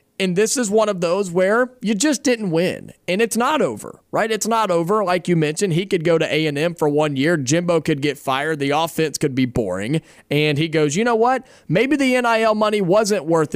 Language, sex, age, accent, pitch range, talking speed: English, male, 30-49, American, 140-190 Hz, 225 wpm